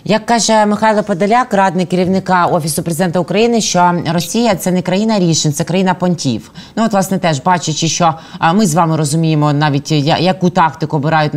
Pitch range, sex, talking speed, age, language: 160-195 Hz, female, 175 wpm, 20-39, Ukrainian